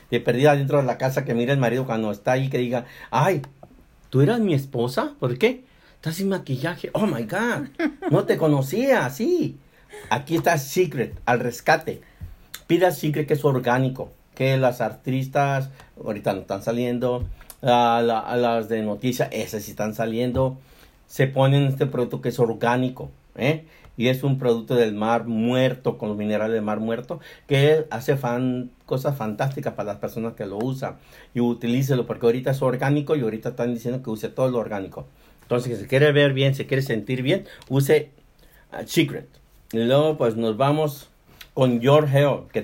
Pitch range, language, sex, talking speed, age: 120-145 Hz, Spanish, male, 175 wpm, 50-69